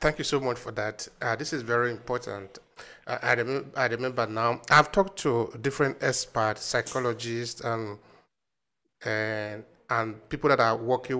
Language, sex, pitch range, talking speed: English, male, 115-135 Hz, 160 wpm